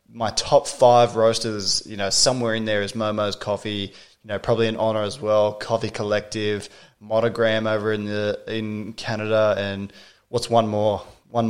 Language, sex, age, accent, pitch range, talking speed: English, male, 20-39, Australian, 105-120 Hz, 165 wpm